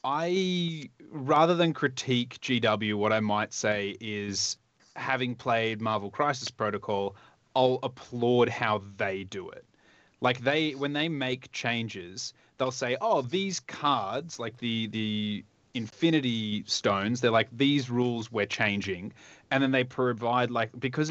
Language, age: English, 20-39